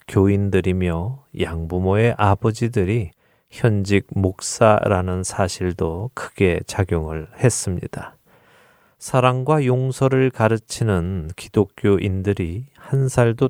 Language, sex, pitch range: Korean, male, 95-120 Hz